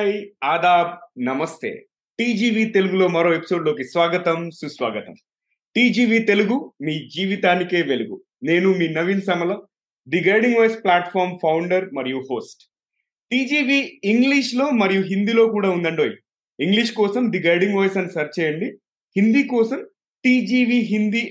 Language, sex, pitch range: Telugu, male, 160-220 Hz